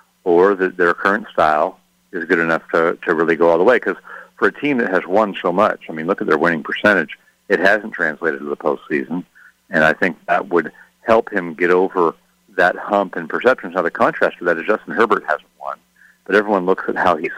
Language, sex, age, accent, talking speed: English, male, 50-69, American, 230 wpm